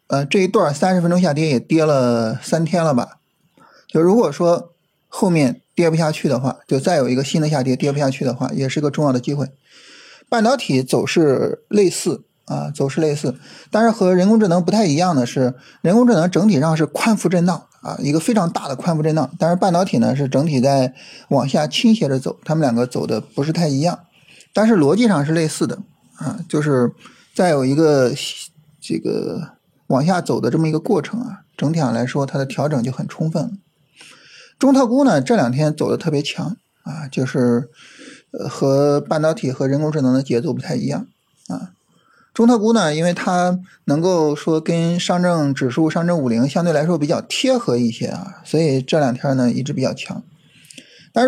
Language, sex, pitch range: Chinese, male, 135-185 Hz